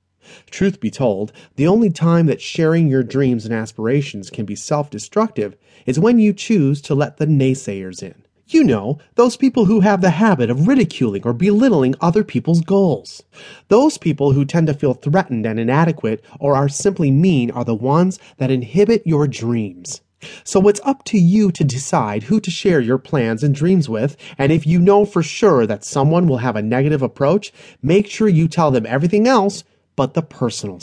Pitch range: 130-195 Hz